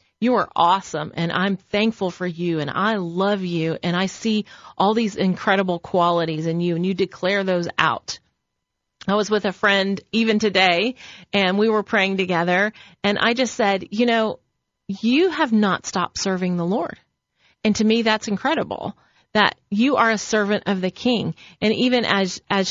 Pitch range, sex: 185-220 Hz, female